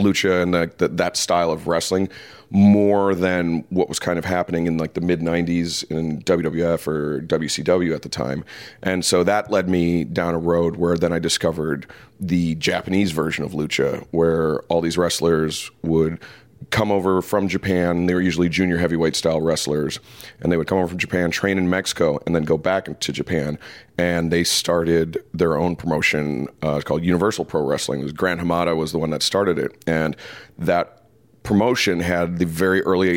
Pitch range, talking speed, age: 85-95 Hz, 180 wpm, 40-59